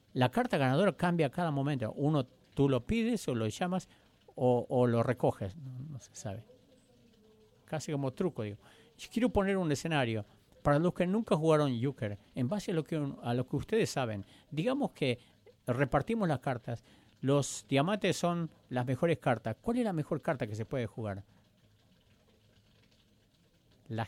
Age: 50-69